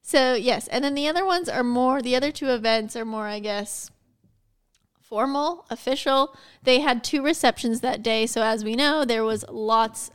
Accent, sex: American, female